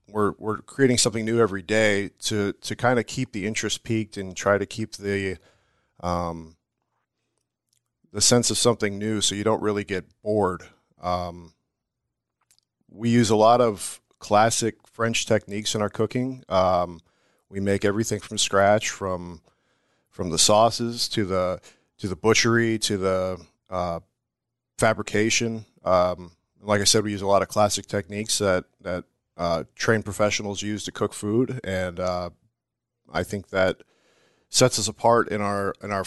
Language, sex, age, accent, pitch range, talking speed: English, male, 40-59, American, 95-110 Hz, 160 wpm